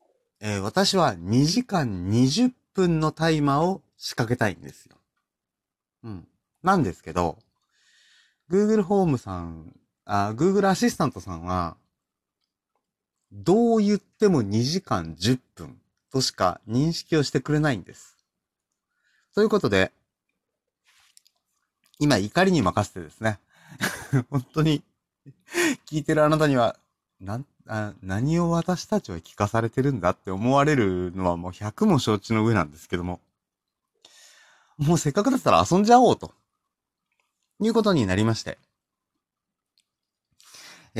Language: Japanese